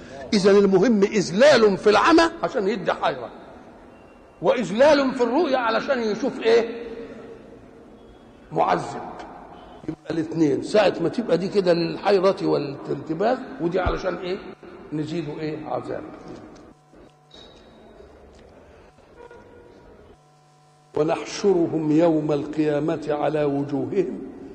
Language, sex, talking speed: Arabic, male, 85 wpm